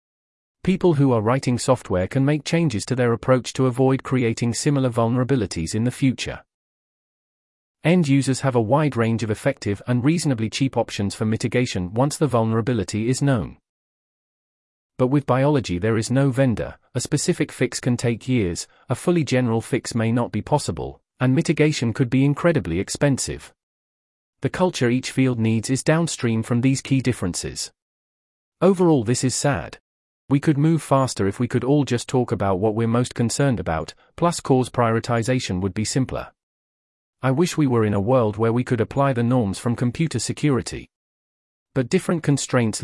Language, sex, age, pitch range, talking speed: English, male, 30-49, 110-140 Hz, 170 wpm